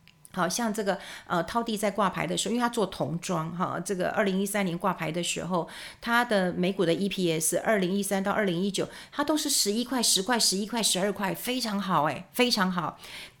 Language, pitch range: Chinese, 175-225 Hz